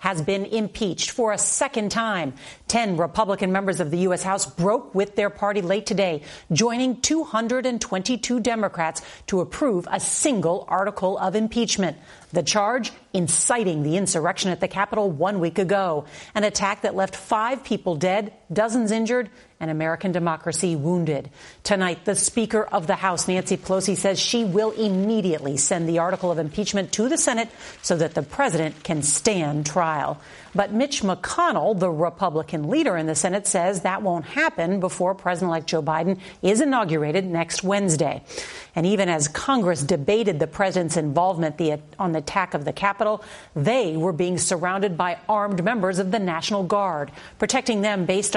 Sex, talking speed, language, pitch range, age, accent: female, 160 wpm, English, 170-215 Hz, 40-59, American